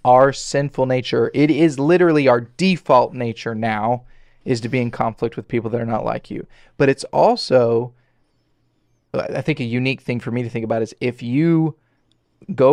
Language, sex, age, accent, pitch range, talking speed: English, male, 20-39, American, 115-135 Hz, 185 wpm